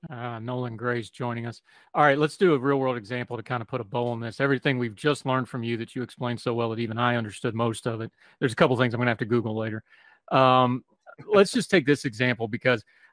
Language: English